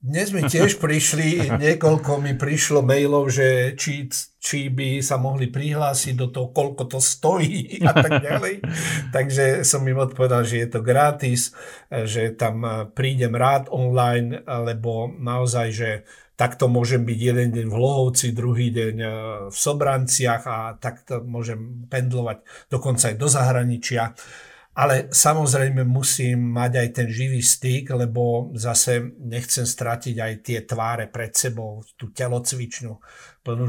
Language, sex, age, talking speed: Slovak, male, 50-69, 140 wpm